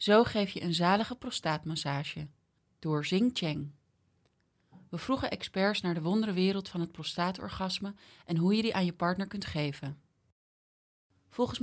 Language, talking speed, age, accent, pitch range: English, 150 wpm, 30-49, Dutch, 160-200 Hz